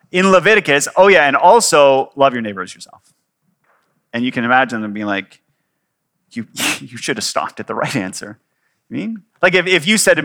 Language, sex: English, male